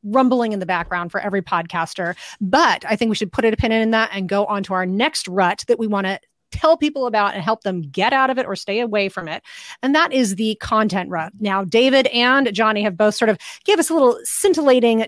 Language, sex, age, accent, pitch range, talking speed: English, female, 30-49, American, 200-250 Hz, 245 wpm